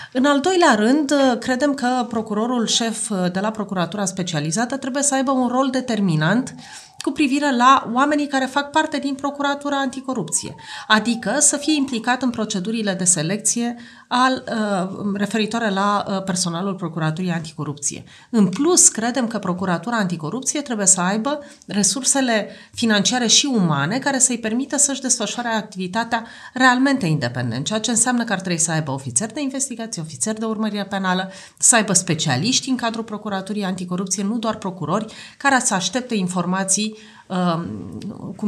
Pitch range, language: 180-250 Hz, Romanian